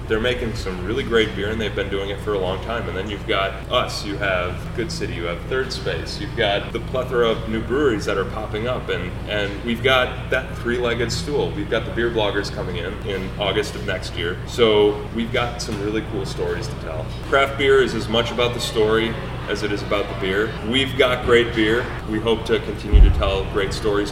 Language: English